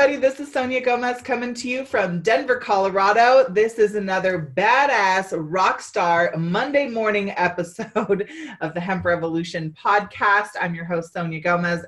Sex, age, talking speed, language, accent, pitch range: female, 20-39, 145 wpm, English, American, 165-215 Hz